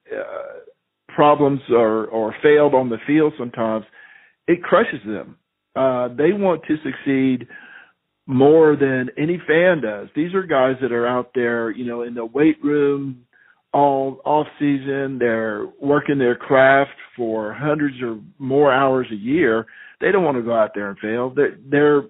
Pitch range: 120-150 Hz